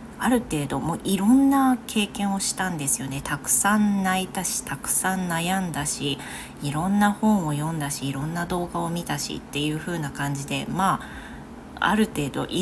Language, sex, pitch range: Japanese, female, 150-220 Hz